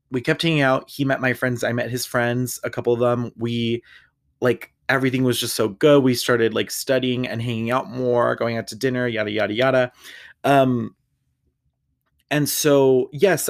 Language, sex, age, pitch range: English, male, 20-39, 115-140 Hz